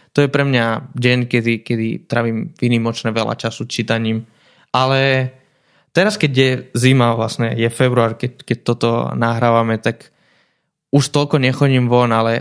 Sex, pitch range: male, 115-135 Hz